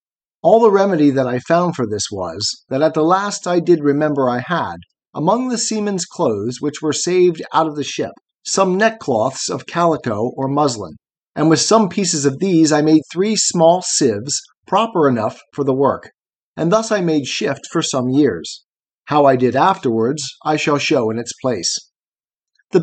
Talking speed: 185 wpm